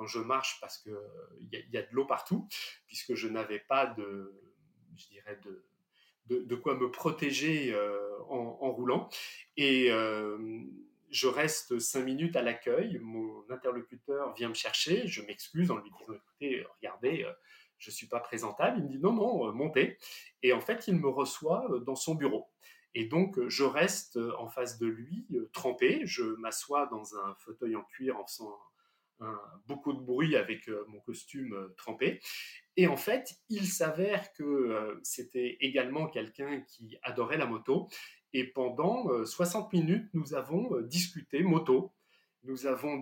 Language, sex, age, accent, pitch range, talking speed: French, male, 30-49, French, 125-180 Hz, 160 wpm